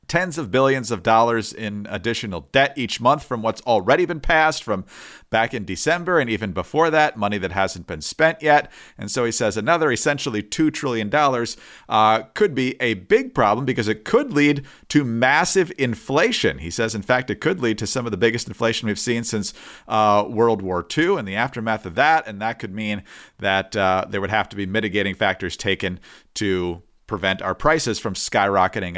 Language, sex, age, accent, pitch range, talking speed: English, male, 40-59, American, 105-140 Hz, 195 wpm